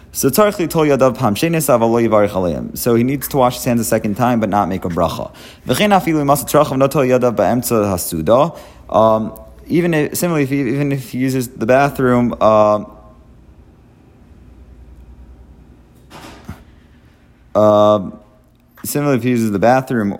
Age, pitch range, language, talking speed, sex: 30-49, 90-120 Hz, English, 105 wpm, male